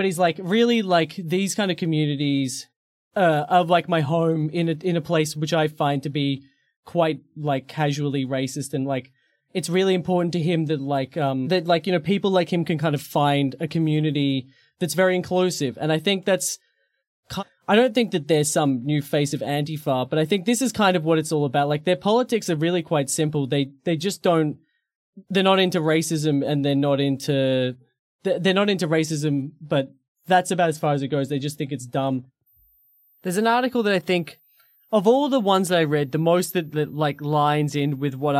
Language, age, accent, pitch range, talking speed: English, 20-39, Australian, 140-175 Hz, 220 wpm